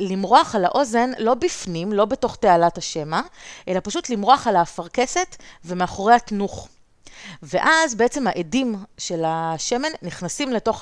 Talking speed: 130 wpm